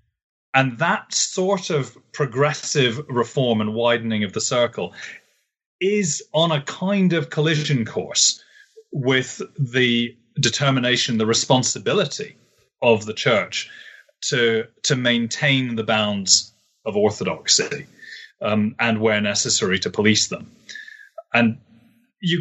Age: 30-49